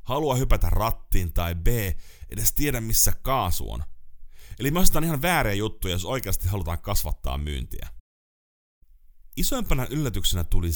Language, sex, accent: Finnish, male, native